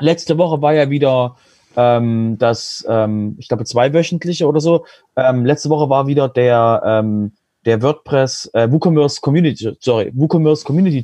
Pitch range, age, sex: 130-160 Hz, 30-49, male